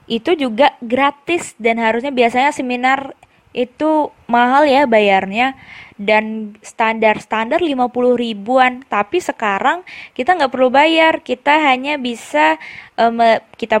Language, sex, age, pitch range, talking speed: Indonesian, female, 20-39, 210-255 Hz, 110 wpm